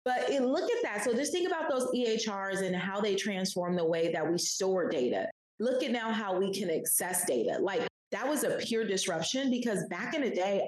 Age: 30-49